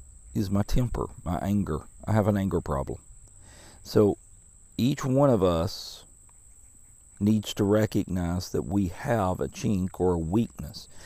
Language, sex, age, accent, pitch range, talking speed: English, male, 50-69, American, 90-105 Hz, 140 wpm